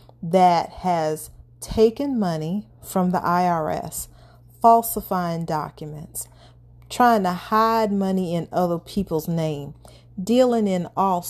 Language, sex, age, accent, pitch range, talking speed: English, female, 40-59, American, 170-220 Hz, 105 wpm